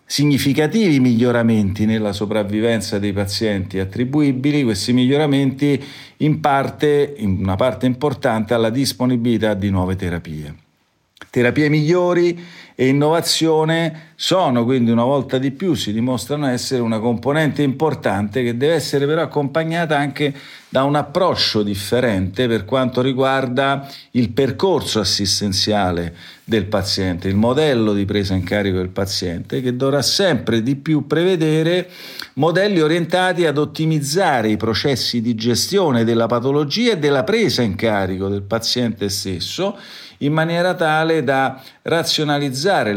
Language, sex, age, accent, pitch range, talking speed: Italian, male, 40-59, native, 110-150 Hz, 125 wpm